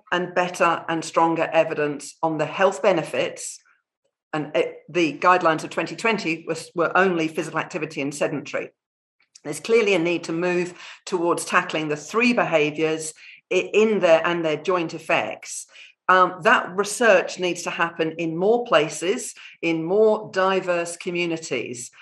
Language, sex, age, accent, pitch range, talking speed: English, female, 50-69, British, 160-190 Hz, 140 wpm